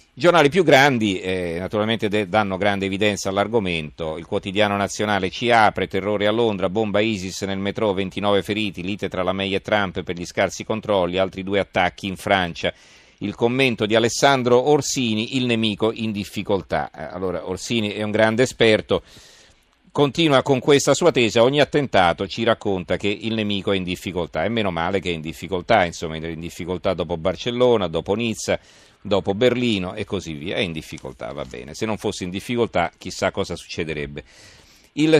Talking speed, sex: 175 wpm, male